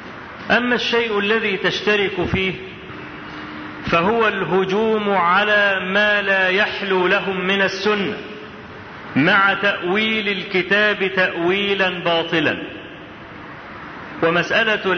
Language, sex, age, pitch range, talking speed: Arabic, male, 40-59, 190-225 Hz, 80 wpm